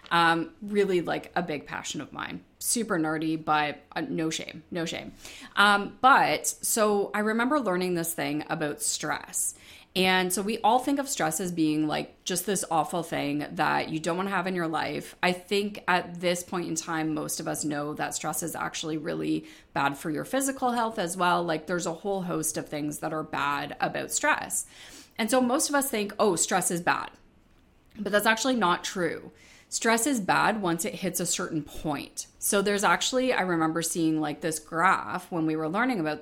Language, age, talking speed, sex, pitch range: English, 30-49, 200 wpm, female, 165-220 Hz